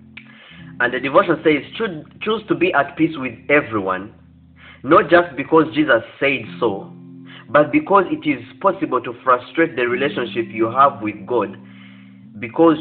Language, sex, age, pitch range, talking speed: English, male, 30-49, 115-185 Hz, 145 wpm